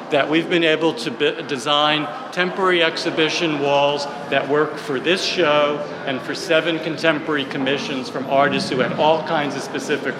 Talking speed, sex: 160 wpm, male